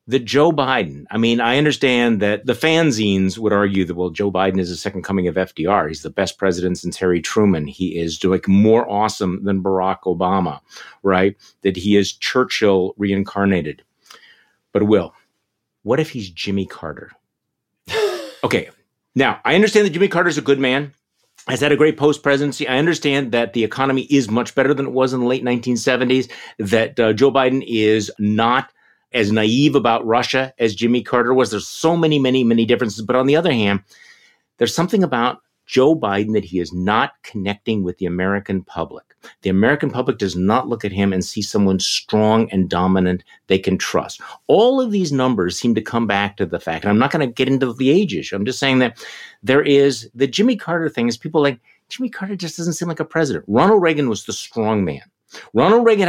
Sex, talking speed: male, 200 wpm